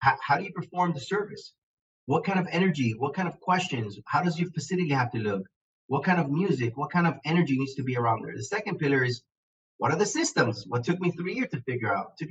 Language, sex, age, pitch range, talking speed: English, male, 30-49, 125-185 Hz, 255 wpm